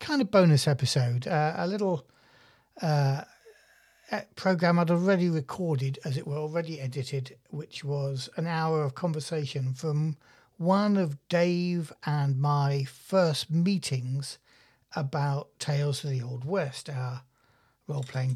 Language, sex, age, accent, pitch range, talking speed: English, male, 60-79, British, 135-175 Hz, 130 wpm